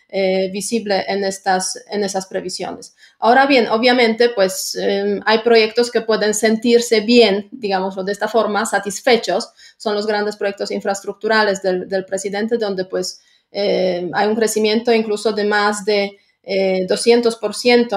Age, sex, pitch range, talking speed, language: 30-49, female, 200-235 Hz, 140 wpm, Spanish